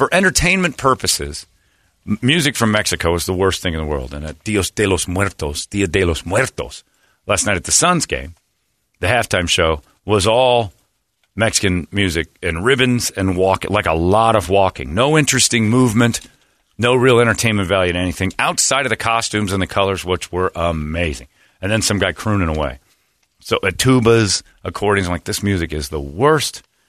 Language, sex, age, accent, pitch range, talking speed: English, male, 40-59, American, 85-115 Hz, 180 wpm